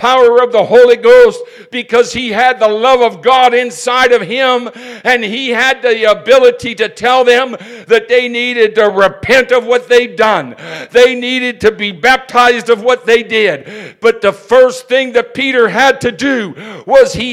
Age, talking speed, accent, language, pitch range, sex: 60-79, 185 wpm, American, English, 165-235 Hz, male